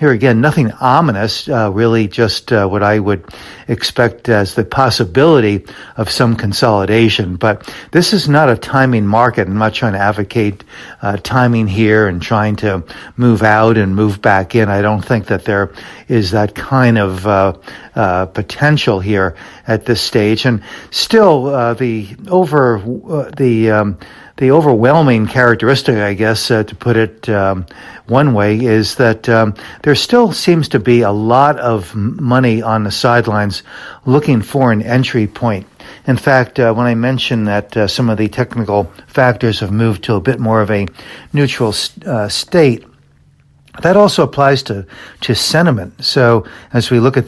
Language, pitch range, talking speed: English, 105-130 Hz, 170 wpm